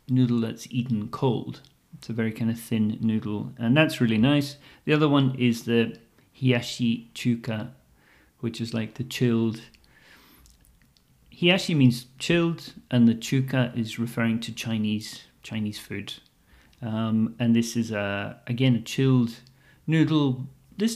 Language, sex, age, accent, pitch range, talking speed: English, male, 40-59, British, 115-135 Hz, 140 wpm